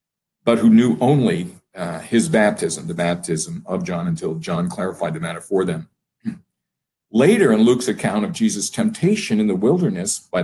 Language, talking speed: English, 165 wpm